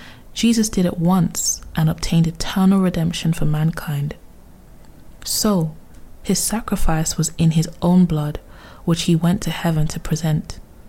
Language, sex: English, female